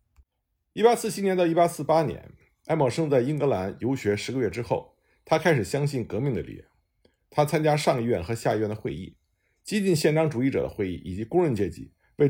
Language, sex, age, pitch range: Chinese, male, 50-69, 105-160 Hz